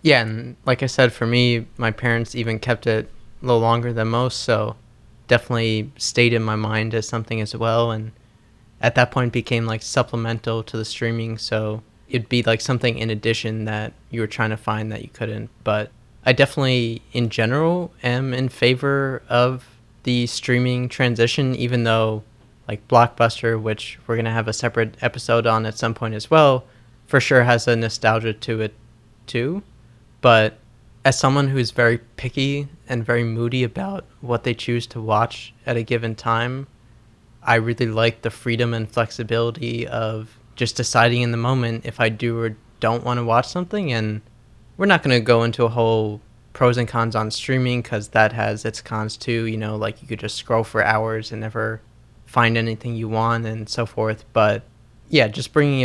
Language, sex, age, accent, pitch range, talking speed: English, male, 20-39, American, 110-120 Hz, 185 wpm